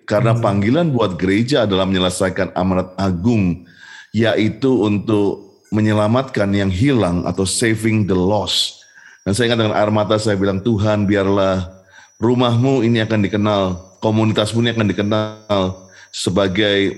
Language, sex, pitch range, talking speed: Indonesian, male, 100-120 Hz, 120 wpm